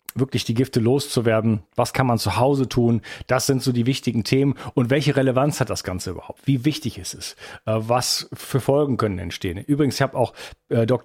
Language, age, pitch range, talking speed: German, 40-59, 115-140 Hz, 200 wpm